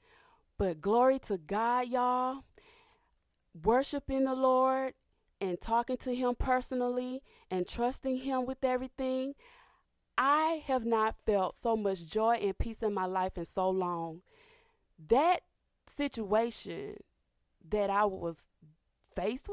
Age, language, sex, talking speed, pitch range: 20-39, English, female, 120 wpm, 180-265 Hz